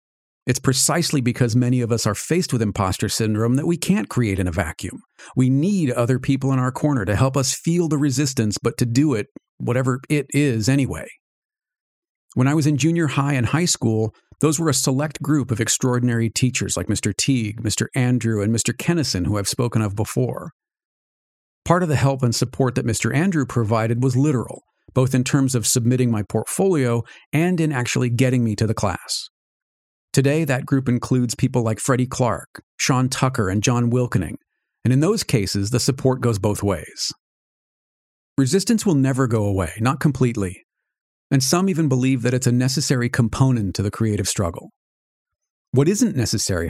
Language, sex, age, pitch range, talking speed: English, male, 50-69, 110-140 Hz, 180 wpm